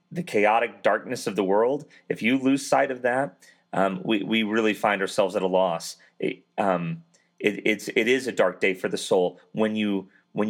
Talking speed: 205 wpm